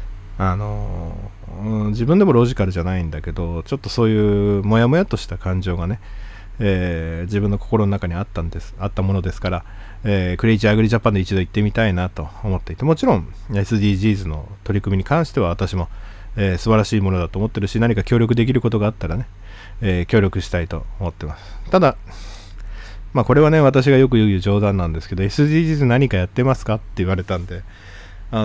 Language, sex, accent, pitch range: Japanese, male, native, 95-110 Hz